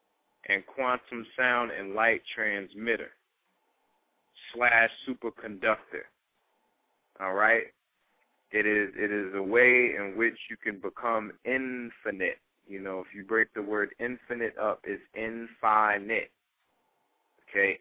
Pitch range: 100-115 Hz